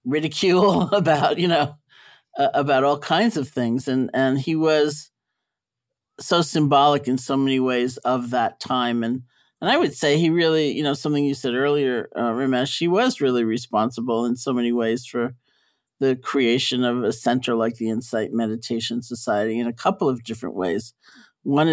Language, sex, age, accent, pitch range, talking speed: English, male, 50-69, American, 125-145 Hz, 175 wpm